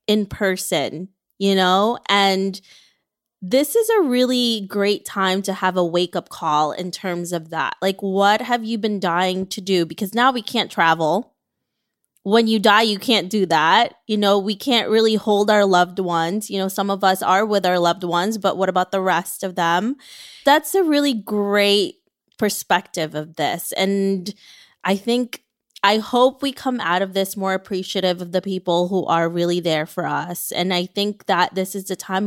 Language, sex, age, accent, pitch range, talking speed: English, female, 20-39, American, 175-215 Hz, 190 wpm